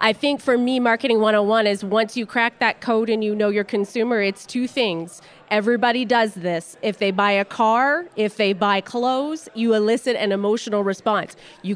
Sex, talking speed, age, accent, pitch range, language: female, 195 wpm, 30-49, American, 205-245 Hz, English